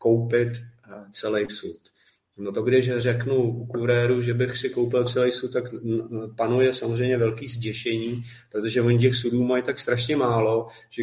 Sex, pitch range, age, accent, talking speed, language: male, 115-130 Hz, 30-49, native, 160 wpm, Czech